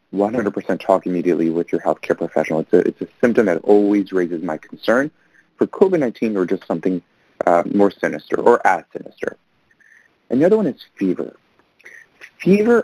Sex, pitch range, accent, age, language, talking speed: male, 95-130 Hz, American, 30-49, English, 155 wpm